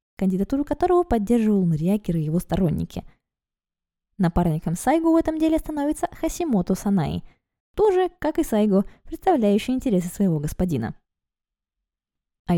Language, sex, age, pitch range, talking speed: Russian, female, 20-39, 165-245 Hz, 115 wpm